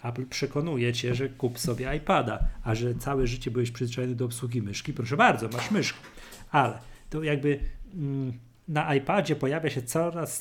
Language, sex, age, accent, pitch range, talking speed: Polish, male, 40-59, native, 120-150 Hz, 165 wpm